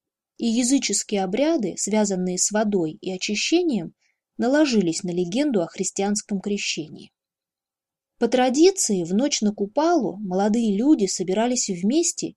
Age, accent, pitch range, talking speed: 20-39, native, 185-250 Hz, 115 wpm